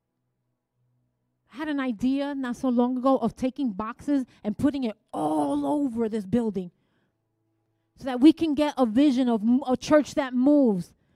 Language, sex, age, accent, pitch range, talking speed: English, female, 30-49, American, 265-435 Hz, 155 wpm